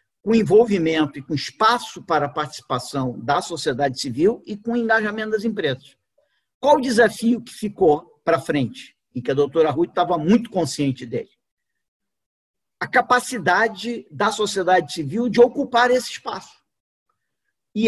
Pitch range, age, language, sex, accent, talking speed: 160-225 Hz, 50-69, Portuguese, male, Brazilian, 145 wpm